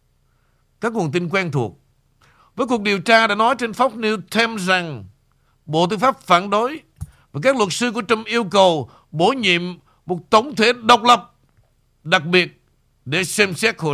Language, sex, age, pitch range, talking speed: Vietnamese, male, 60-79, 135-210 Hz, 180 wpm